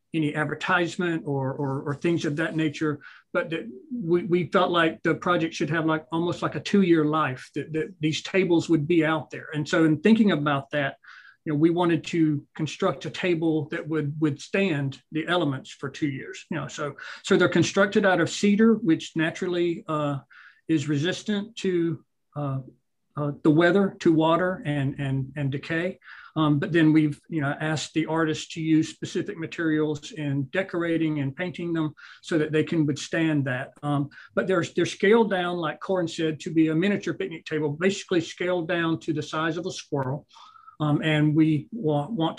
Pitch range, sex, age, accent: 150-175 Hz, male, 40-59, American